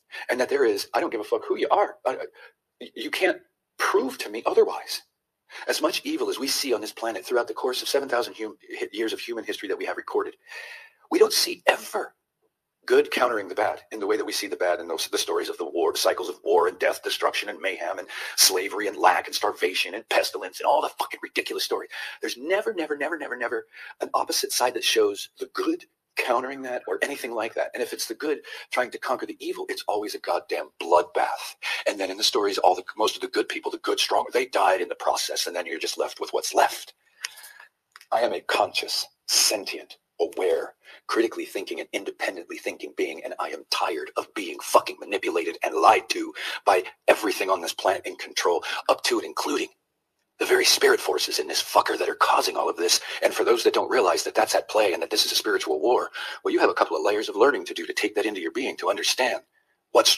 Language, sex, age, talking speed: English, male, 40-59, 230 wpm